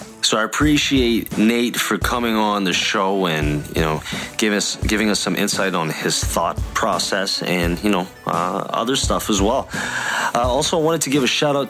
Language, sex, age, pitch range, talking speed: English, male, 20-39, 90-115 Hz, 200 wpm